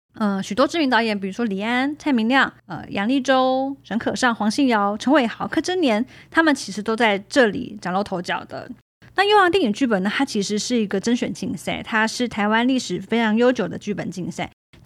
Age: 20-39